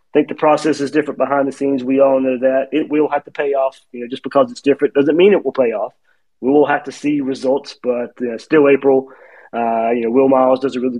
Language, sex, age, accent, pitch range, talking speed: English, male, 30-49, American, 130-150 Hz, 265 wpm